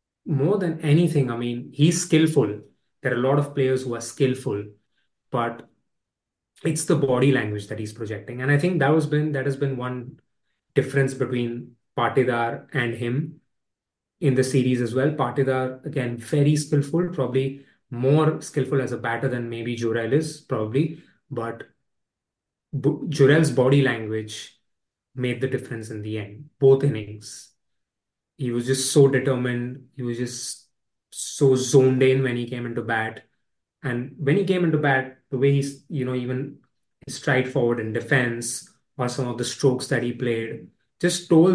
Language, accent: English, Indian